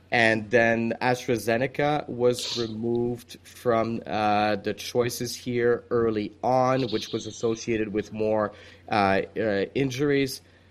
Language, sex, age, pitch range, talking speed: English, male, 30-49, 110-130 Hz, 110 wpm